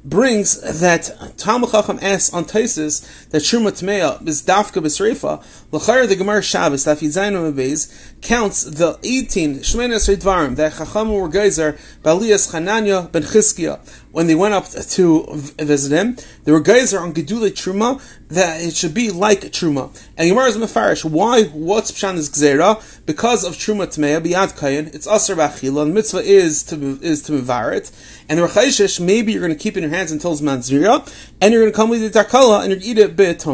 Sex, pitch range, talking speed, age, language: male, 160-205 Hz, 175 wpm, 30-49, English